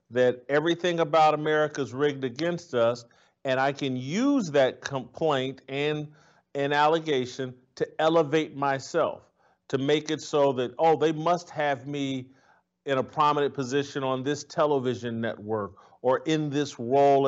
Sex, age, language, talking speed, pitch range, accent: male, 50-69, English, 145 wpm, 130-160 Hz, American